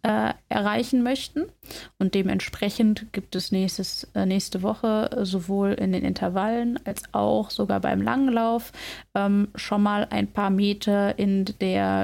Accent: German